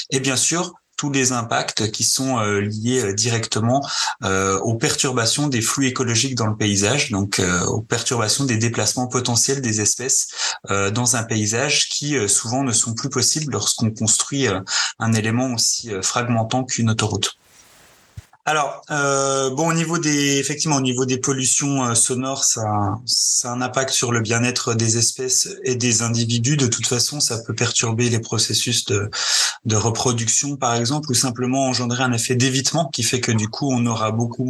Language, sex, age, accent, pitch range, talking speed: French, male, 30-49, French, 115-135 Hz, 165 wpm